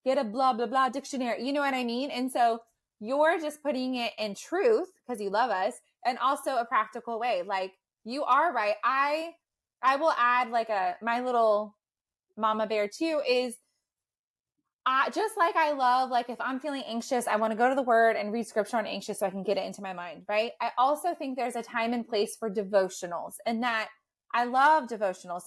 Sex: female